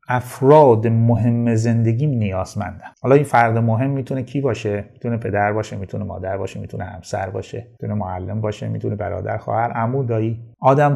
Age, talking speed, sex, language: 30-49, 165 wpm, male, Persian